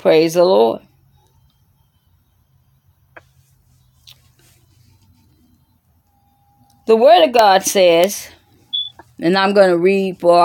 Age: 40-59